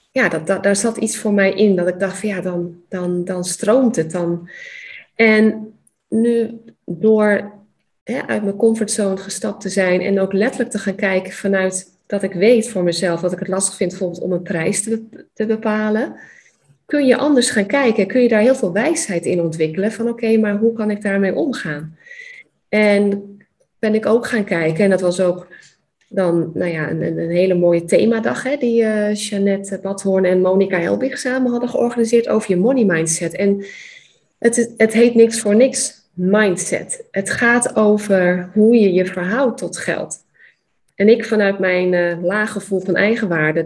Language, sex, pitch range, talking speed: Dutch, female, 180-225 Hz, 180 wpm